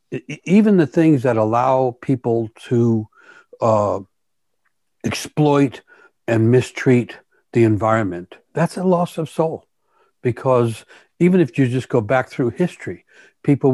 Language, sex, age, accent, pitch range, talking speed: English, male, 60-79, American, 110-135 Hz, 120 wpm